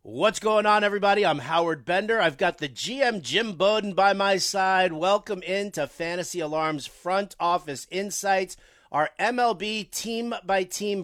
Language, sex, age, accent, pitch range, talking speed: English, male, 40-59, American, 160-225 Hz, 140 wpm